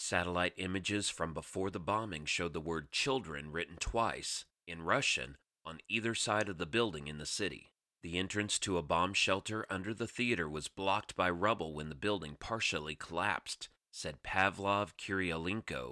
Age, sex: 30-49, male